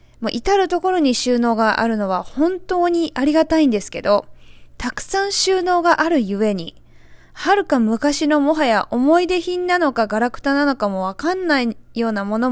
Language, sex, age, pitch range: Japanese, female, 20-39, 205-300 Hz